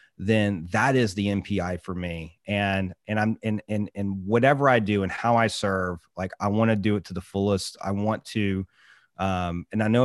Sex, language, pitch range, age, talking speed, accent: male, English, 95-110 Hz, 30-49, 215 wpm, American